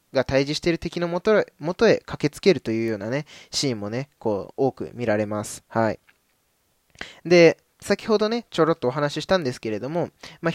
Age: 20-39